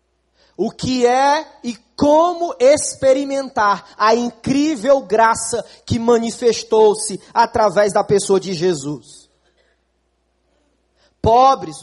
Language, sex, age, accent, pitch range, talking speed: Portuguese, male, 20-39, Brazilian, 190-270 Hz, 85 wpm